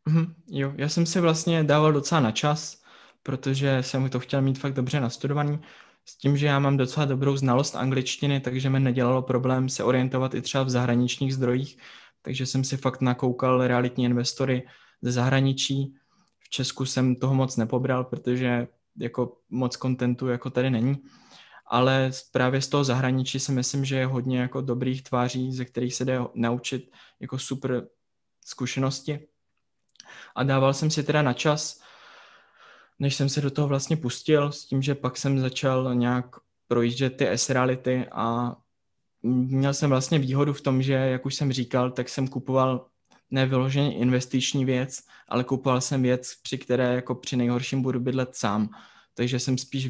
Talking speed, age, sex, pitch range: 165 wpm, 20-39, male, 125-135 Hz